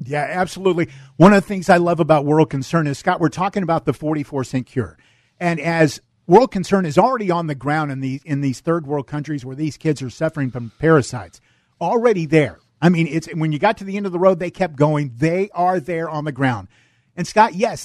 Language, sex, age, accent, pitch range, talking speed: English, male, 50-69, American, 135-180 Hz, 225 wpm